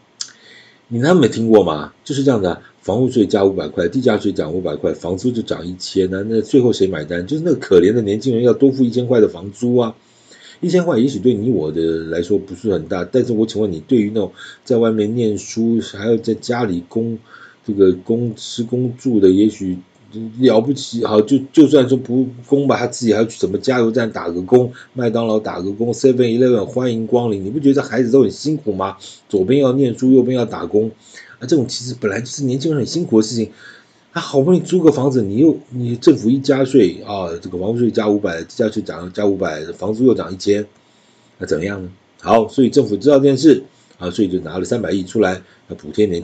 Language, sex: Chinese, male